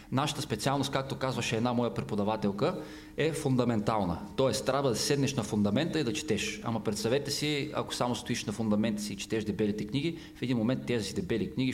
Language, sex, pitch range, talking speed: Bulgarian, male, 105-135 Hz, 190 wpm